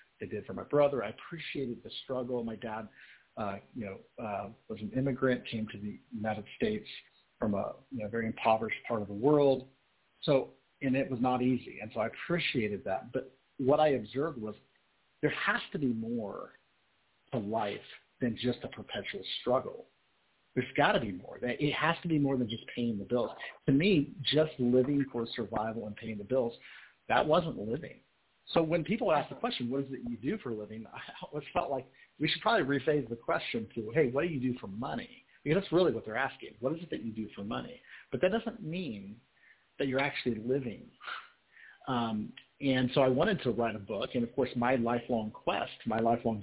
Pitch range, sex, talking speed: 115-145 Hz, male, 205 wpm